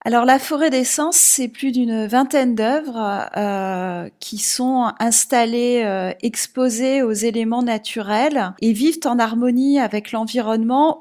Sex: female